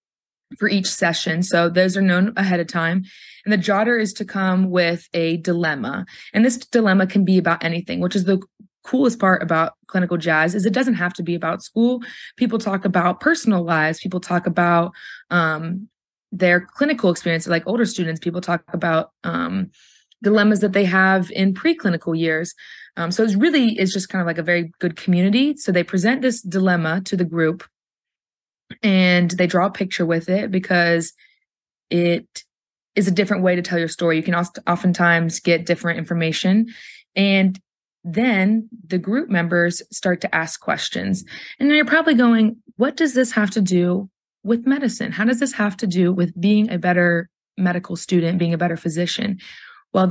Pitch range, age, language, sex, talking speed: 175-210 Hz, 20-39, English, female, 180 wpm